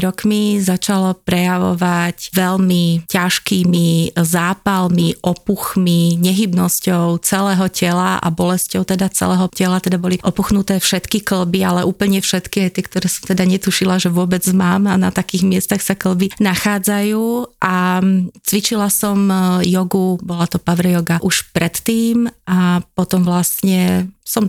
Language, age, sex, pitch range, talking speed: Slovak, 30-49, female, 180-205 Hz, 125 wpm